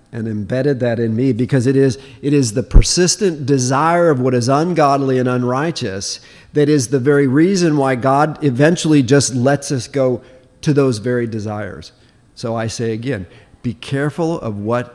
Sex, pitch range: male, 115-140 Hz